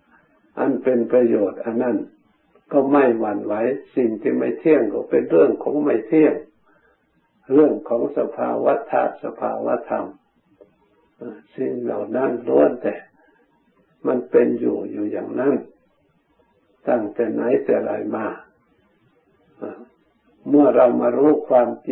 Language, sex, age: Thai, male, 60-79